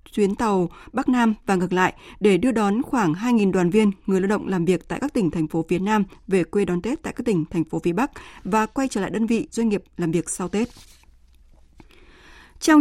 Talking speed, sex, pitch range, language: 240 wpm, female, 185-235 Hz, Vietnamese